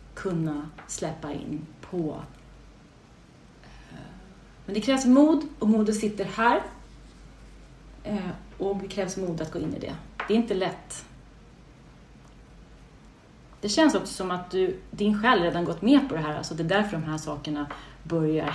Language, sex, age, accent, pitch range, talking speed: English, female, 30-49, Swedish, 160-205 Hz, 150 wpm